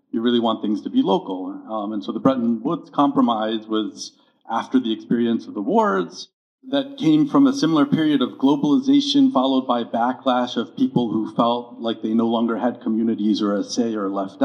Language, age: English, 50-69